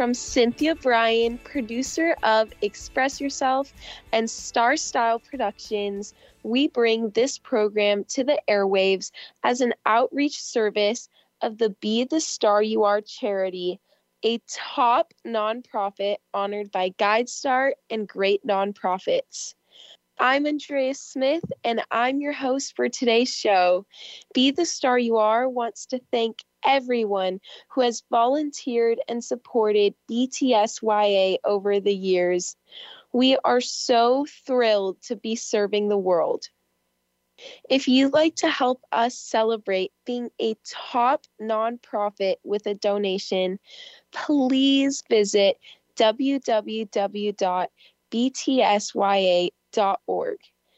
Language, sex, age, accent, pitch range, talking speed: English, female, 10-29, American, 205-265 Hz, 110 wpm